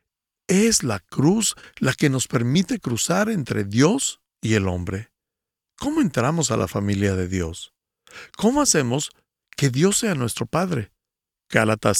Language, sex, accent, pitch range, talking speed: Spanish, male, Mexican, 110-170 Hz, 140 wpm